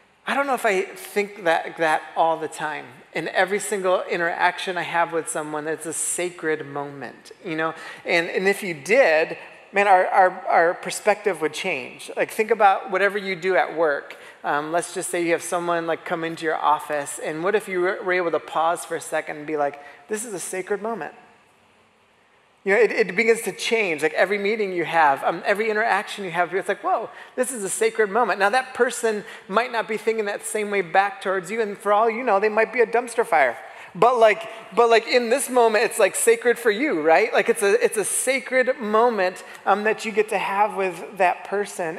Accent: American